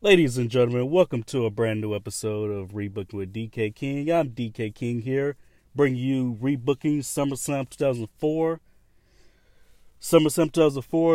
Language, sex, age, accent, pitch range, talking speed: English, male, 30-49, American, 110-135 Hz, 135 wpm